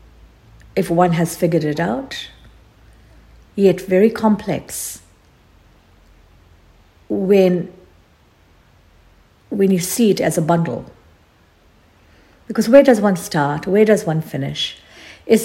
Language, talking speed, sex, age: English, 105 wpm, female, 60-79